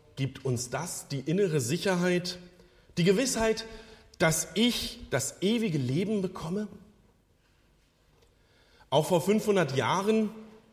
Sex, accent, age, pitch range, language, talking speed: male, German, 40-59, 135-195 Hz, German, 100 wpm